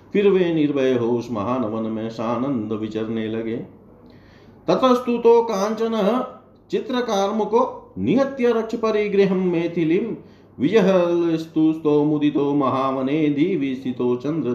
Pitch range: 105-135 Hz